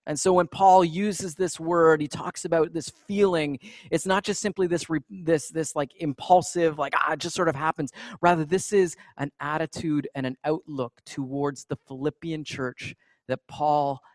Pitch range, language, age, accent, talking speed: 140-195 Hz, English, 30-49, American, 180 wpm